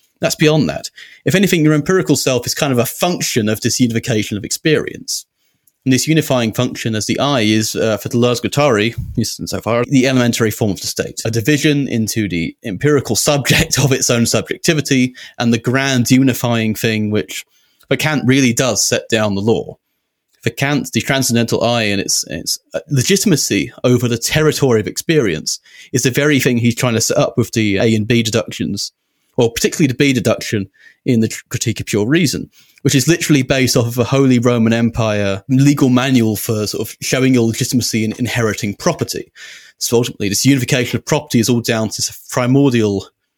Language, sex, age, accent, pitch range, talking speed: English, male, 30-49, British, 110-140 Hz, 190 wpm